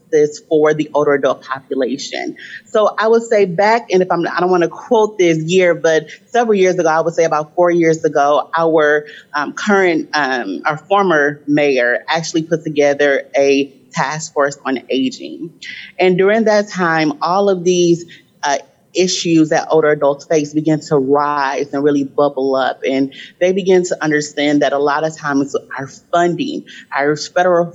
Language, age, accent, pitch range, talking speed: English, 30-49, American, 145-170 Hz, 175 wpm